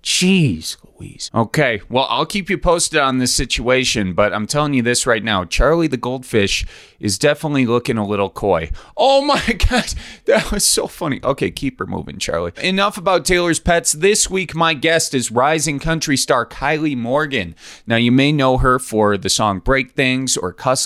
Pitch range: 115-170 Hz